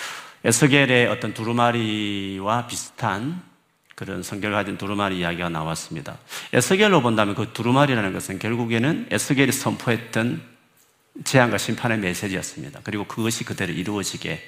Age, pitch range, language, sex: 40-59, 100-140 Hz, Korean, male